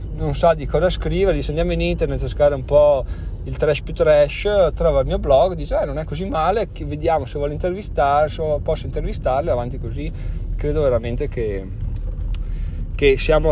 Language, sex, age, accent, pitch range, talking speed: Italian, male, 30-49, native, 95-150 Hz, 180 wpm